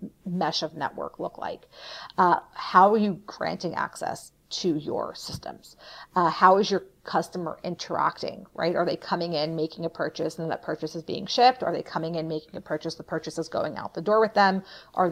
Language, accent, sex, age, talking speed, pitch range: English, American, female, 40-59, 205 wpm, 165-190 Hz